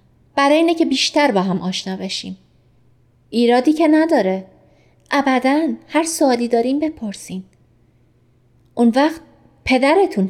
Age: 30-49